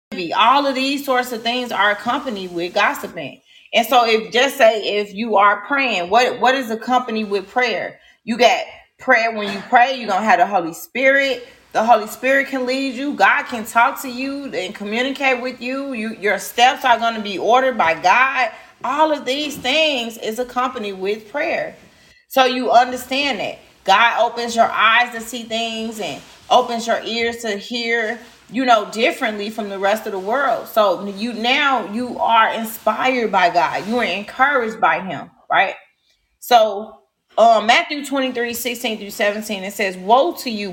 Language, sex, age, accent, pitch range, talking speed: English, female, 30-49, American, 205-255 Hz, 180 wpm